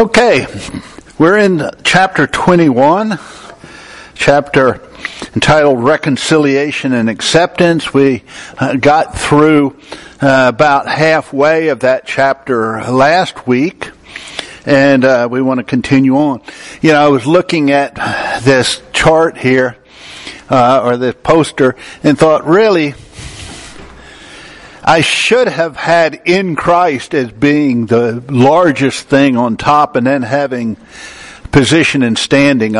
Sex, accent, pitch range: male, American, 130-155 Hz